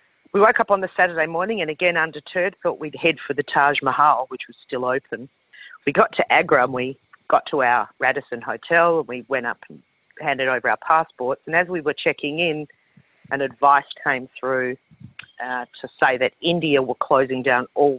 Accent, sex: Australian, female